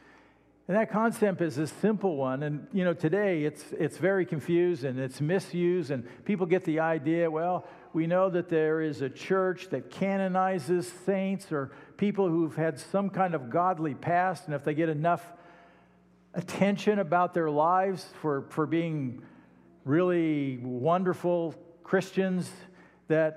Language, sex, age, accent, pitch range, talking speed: English, male, 50-69, American, 150-185 Hz, 150 wpm